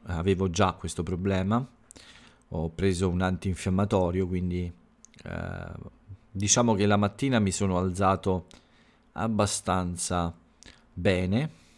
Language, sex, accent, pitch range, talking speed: Italian, male, native, 90-115 Hz, 95 wpm